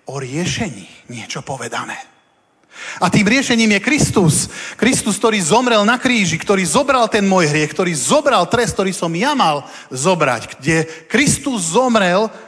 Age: 40-59